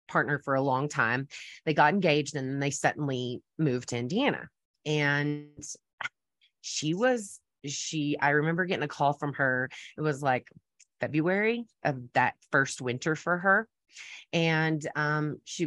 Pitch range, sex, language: 140-190 Hz, female, English